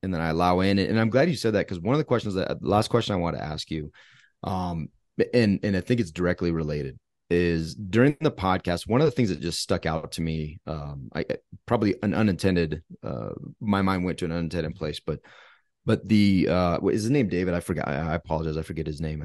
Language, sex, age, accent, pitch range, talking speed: English, male, 30-49, American, 85-115 Hz, 245 wpm